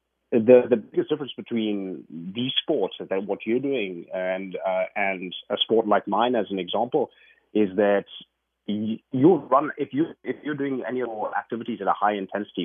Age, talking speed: 30-49, 190 wpm